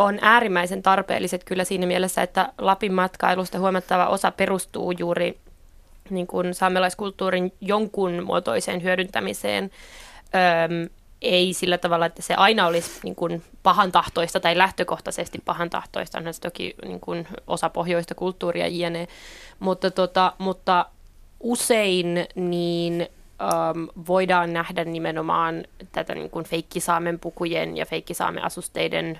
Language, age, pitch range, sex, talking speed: Finnish, 20-39, 170-185 Hz, female, 115 wpm